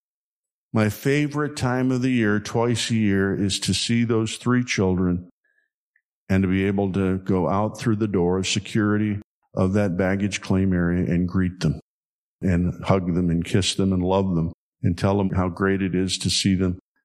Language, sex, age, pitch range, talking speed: English, male, 50-69, 95-125 Hz, 190 wpm